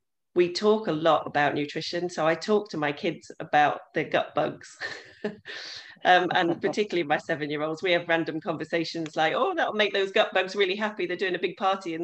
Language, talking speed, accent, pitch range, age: English, 200 wpm, British, 150-190 Hz, 40-59